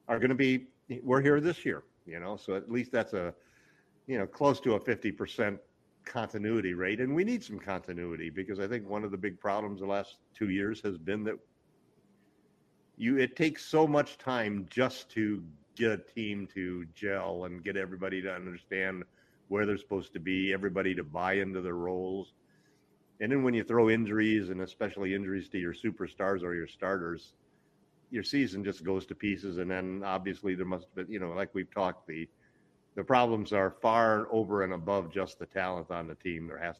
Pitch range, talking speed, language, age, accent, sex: 90-105 Hz, 195 wpm, English, 50-69, American, male